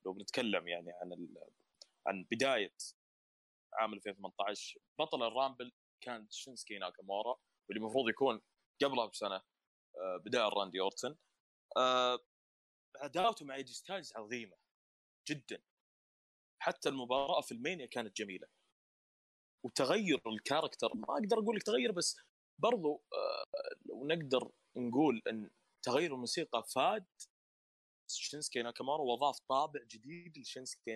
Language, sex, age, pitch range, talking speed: Arabic, male, 20-39, 105-140 Hz, 110 wpm